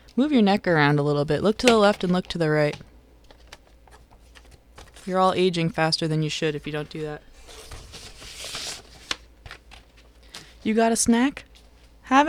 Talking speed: 160 wpm